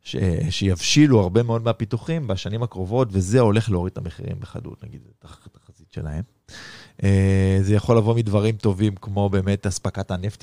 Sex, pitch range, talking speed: male, 95-125 Hz, 150 wpm